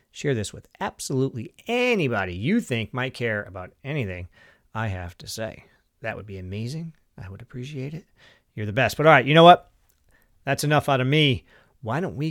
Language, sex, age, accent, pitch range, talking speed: English, male, 40-59, American, 120-155 Hz, 195 wpm